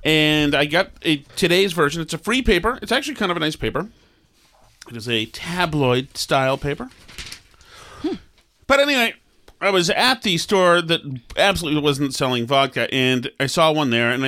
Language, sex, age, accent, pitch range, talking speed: English, male, 40-59, American, 120-180 Hz, 175 wpm